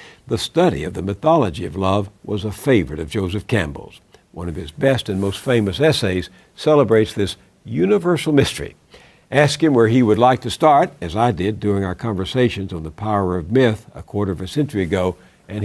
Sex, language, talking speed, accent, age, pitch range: male, English, 195 wpm, American, 60-79, 95-135 Hz